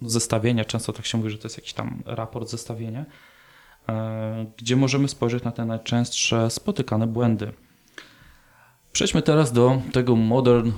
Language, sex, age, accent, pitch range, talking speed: Polish, male, 20-39, native, 105-120 Hz, 145 wpm